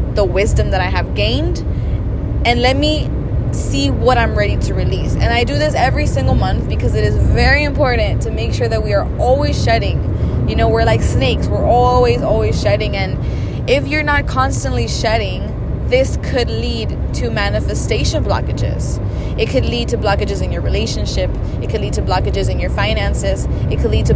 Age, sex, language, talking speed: 20-39, female, English, 190 wpm